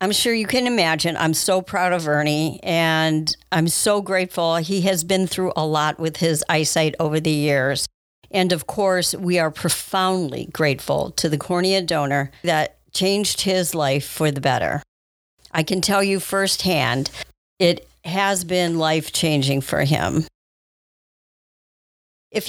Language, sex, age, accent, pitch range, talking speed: English, female, 50-69, American, 155-195 Hz, 150 wpm